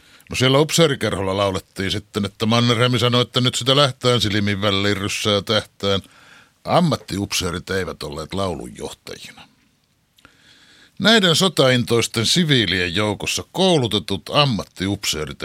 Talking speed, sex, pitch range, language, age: 100 wpm, male, 95-130 Hz, Finnish, 60-79